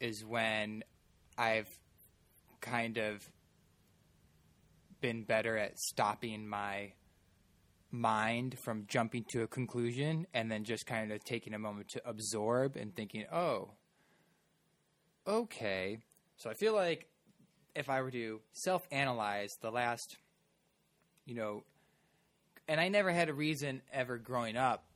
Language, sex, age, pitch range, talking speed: English, male, 20-39, 110-145 Hz, 125 wpm